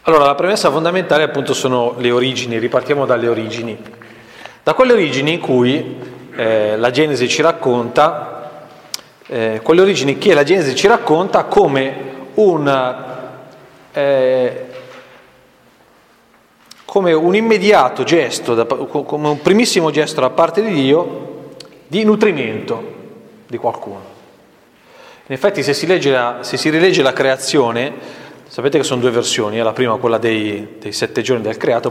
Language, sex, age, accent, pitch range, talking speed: Italian, male, 40-59, native, 120-165 Hz, 140 wpm